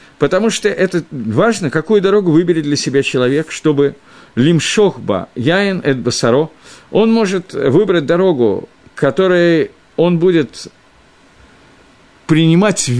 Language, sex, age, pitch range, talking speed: Russian, male, 50-69, 120-175 Hz, 100 wpm